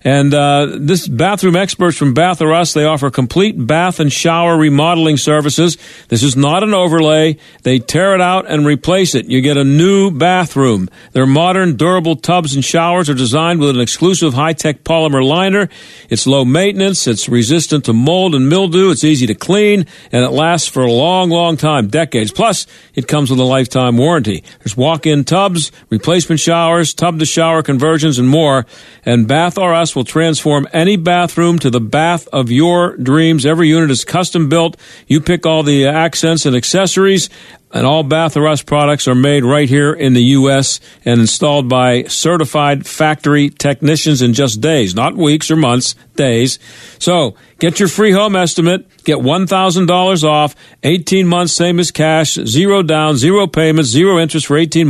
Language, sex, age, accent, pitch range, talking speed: English, male, 50-69, American, 140-175 Hz, 175 wpm